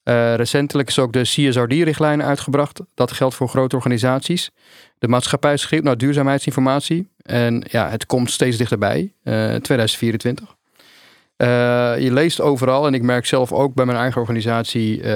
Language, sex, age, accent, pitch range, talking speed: Dutch, male, 40-59, Dutch, 115-135 Hz, 155 wpm